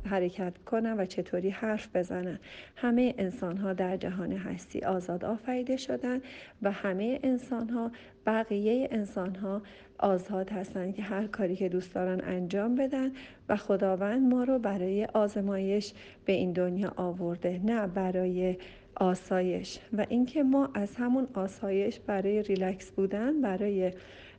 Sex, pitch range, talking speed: female, 185-230 Hz, 140 wpm